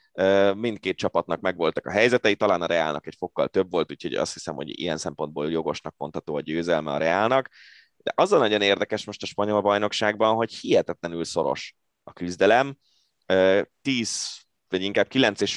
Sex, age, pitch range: male, 20-39, 90-105 Hz